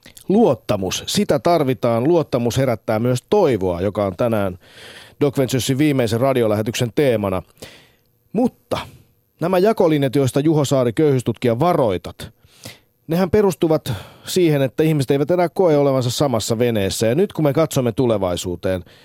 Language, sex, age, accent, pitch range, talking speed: Finnish, male, 30-49, native, 115-145 Hz, 125 wpm